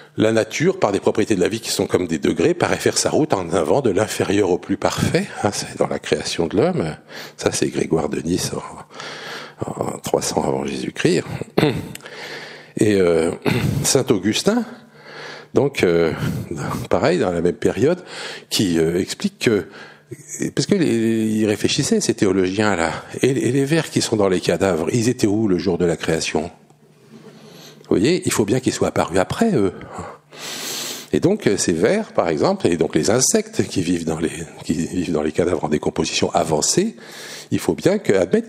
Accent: French